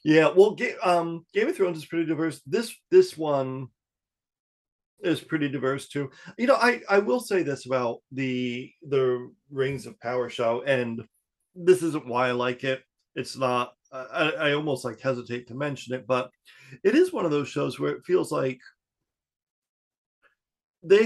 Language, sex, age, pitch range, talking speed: English, male, 40-59, 125-165 Hz, 170 wpm